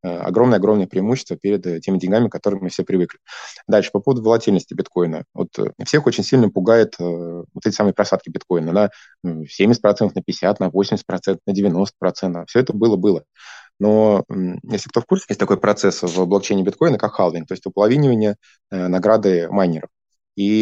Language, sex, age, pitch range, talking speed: Russian, male, 20-39, 90-115 Hz, 160 wpm